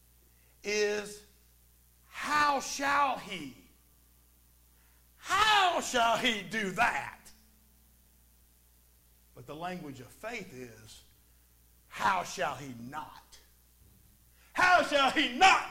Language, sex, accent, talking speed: English, male, American, 90 wpm